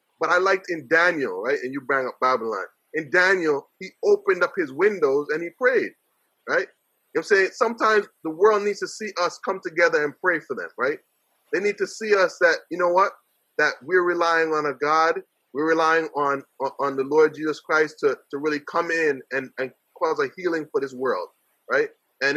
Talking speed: 215 wpm